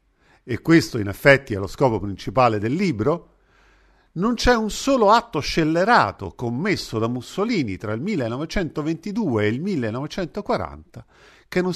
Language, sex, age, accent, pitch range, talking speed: Italian, male, 50-69, native, 115-180 Hz, 140 wpm